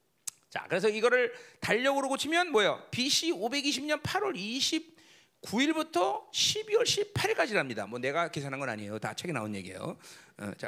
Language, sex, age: Korean, male, 40-59